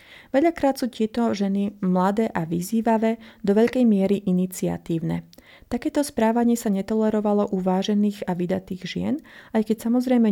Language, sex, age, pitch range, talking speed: Slovak, female, 30-49, 190-235 Hz, 135 wpm